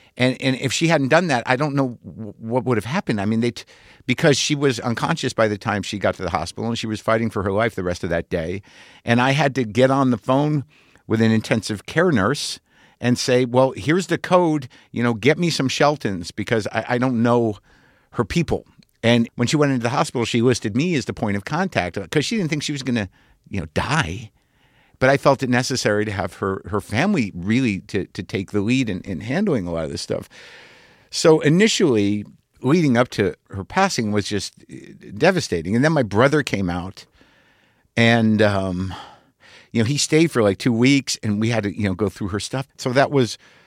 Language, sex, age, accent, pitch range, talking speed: English, male, 50-69, American, 95-130 Hz, 225 wpm